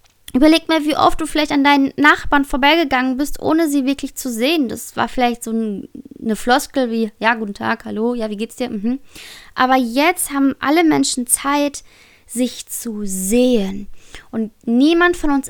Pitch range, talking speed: 220-275 Hz, 175 wpm